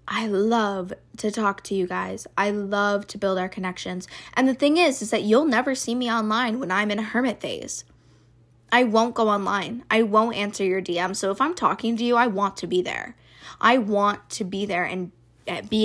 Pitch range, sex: 185-225 Hz, female